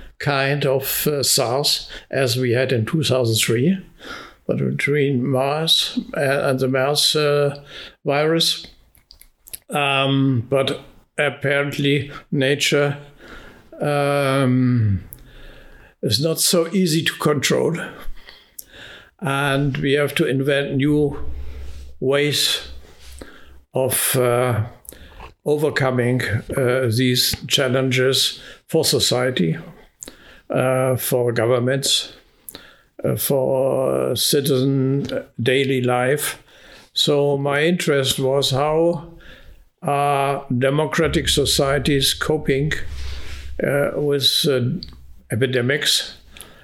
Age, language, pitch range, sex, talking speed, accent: 60-79, Czech, 120-145 Hz, male, 85 wpm, German